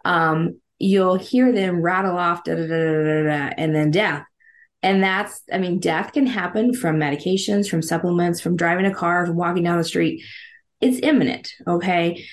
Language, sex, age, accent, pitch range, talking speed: English, female, 20-39, American, 165-215 Hz, 155 wpm